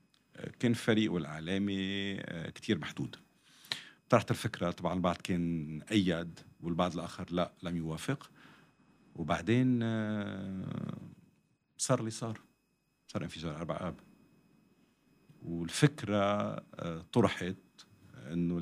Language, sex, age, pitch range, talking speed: English, male, 50-69, 85-100 Hz, 85 wpm